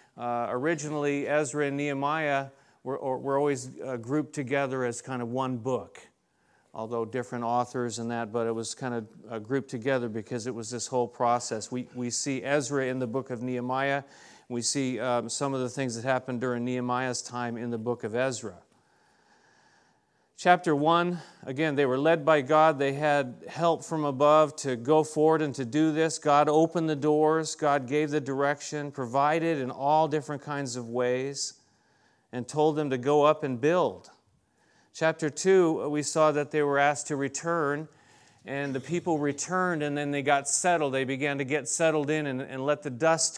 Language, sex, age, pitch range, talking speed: English, male, 40-59, 125-150 Hz, 185 wpm